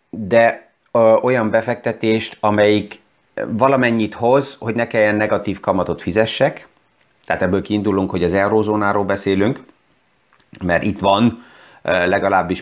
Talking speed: 115 wpm